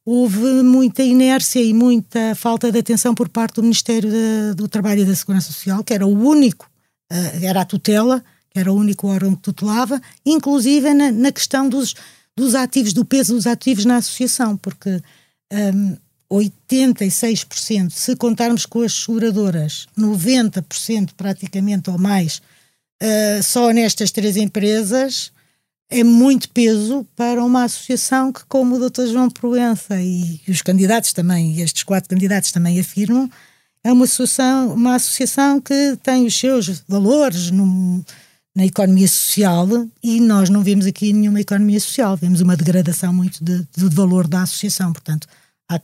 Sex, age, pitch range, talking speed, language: female, 20-39, 185-240 Hz, 155 wpm, Portuguese